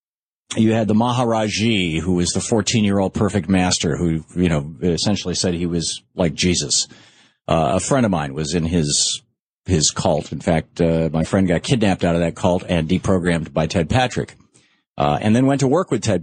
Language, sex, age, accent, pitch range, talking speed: English, male, 50-69, American, 85-120 Hz, 195 wpm